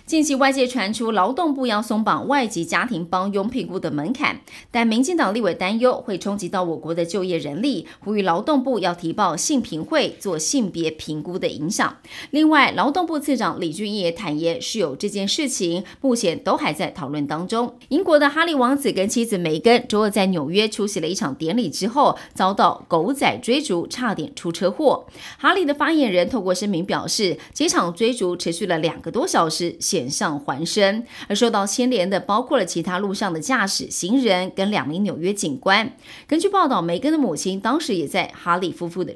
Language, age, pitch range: Chinese, 30-49, 175-260 Hz